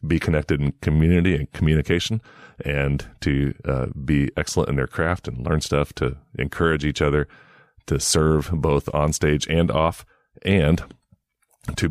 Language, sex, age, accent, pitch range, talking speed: English, male, 30-49, American, 75-85 Hz, 150 wpm